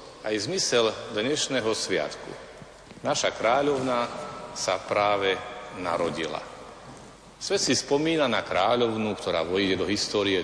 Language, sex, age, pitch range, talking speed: Slovak, male, 40-59, 100-160 Hz, 110 wpm